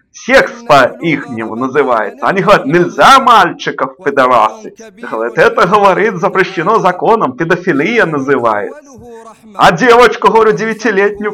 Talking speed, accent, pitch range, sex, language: 105 wpm, native, 190-250 Hz, male, Russian